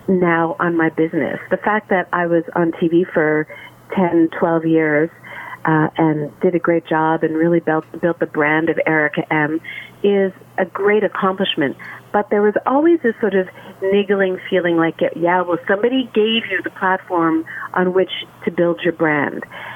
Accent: American